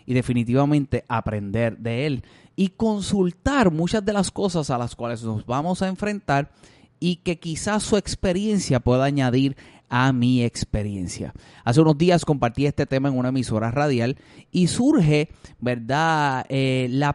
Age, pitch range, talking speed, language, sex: 30-49, 130-175 Hz, 145 wpm, Spanish, male